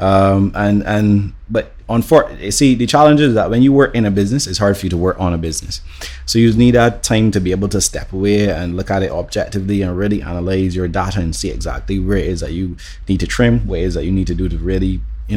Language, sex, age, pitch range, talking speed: English, male, 20-39, 90-105 Hz, 275 wpm